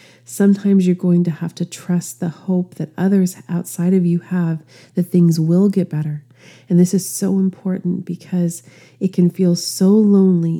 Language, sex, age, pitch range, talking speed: English, female, 30-49, 165-185 Hz, 175 wpm